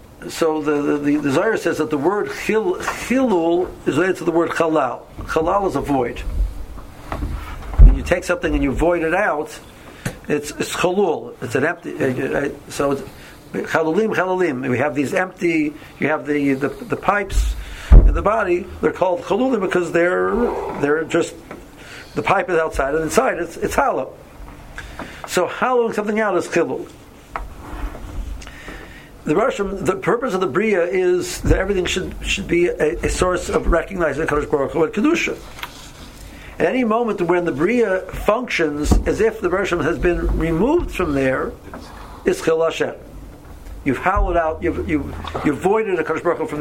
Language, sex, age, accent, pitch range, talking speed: English, male, 60-79, American, 150-195 Hz, 165 wpm